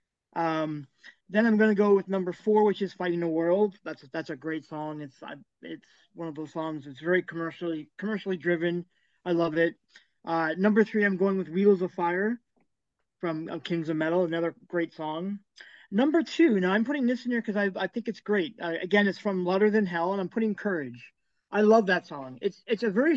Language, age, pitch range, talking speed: English, 20-39, 175-230 Hz, 220 wpm